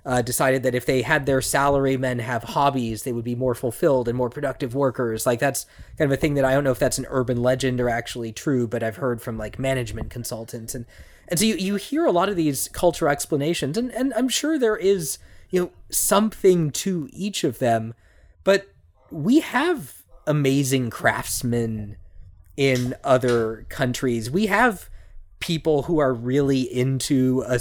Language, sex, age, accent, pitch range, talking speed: English, male, 20-39, American, 125-175 Hz, 185 wpm